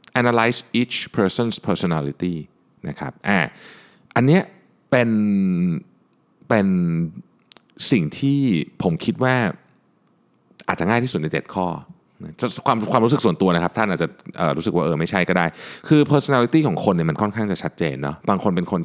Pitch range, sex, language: 95-135 Hz, male, Thai